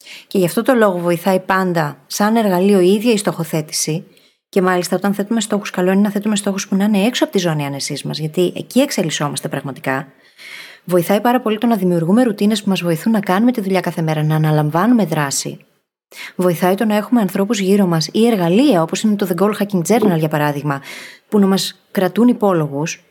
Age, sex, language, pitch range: 20-39, female, Greek, 165-210 Hz